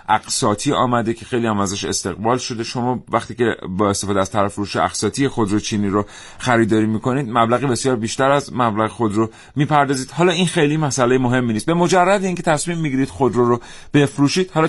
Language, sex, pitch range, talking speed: Persian, male, 105-135 Hz, 175 wpm